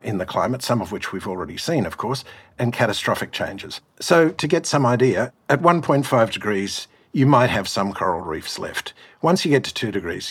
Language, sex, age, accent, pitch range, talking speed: English, male, 50-69, Australian, 115-150 Hz, 205 wpm